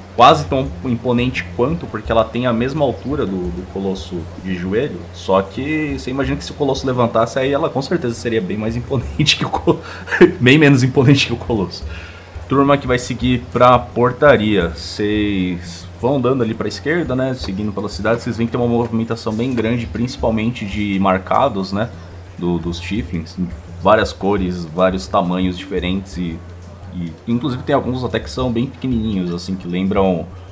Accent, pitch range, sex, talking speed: Brazilian, 90-125 Hz, male, 175 wpm